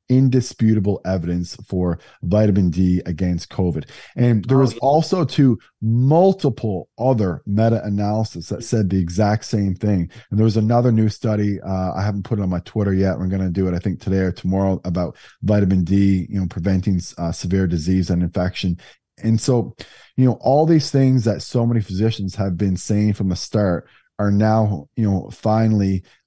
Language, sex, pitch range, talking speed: English, male, 95-110 Hz, 180 wpm